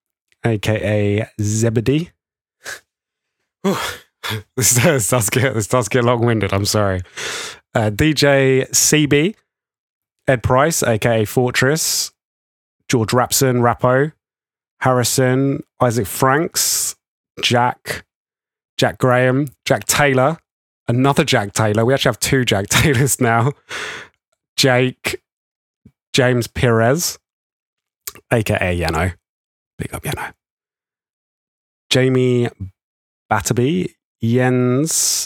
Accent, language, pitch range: British, English, 110-135 Hz